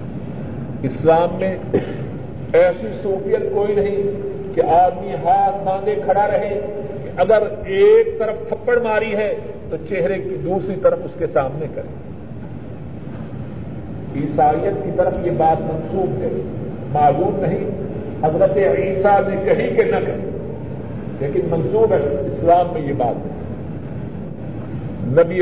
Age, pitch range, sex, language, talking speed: 50-69, 175-245 Hz, male, Urdu, 125 wpm